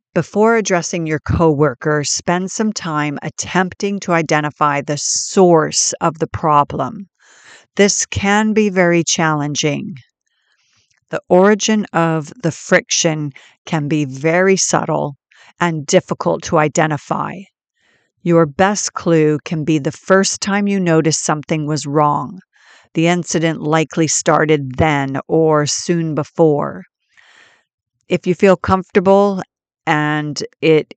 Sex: female